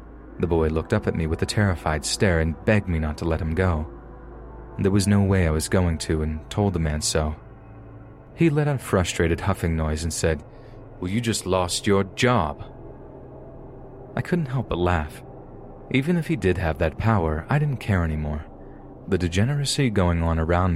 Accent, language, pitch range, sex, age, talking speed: American, English, 80-115 Hz, male, 30-49, 195 wpm